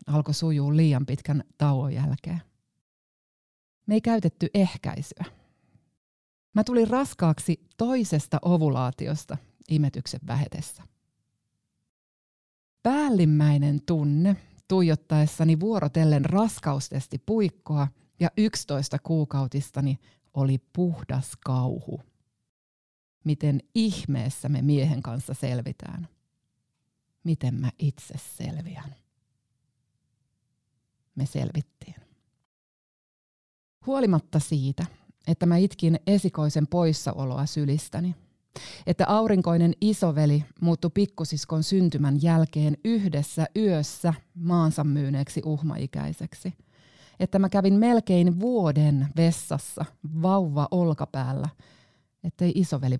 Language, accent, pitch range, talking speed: Finnish, native, 140-170 Hz, 80 wpm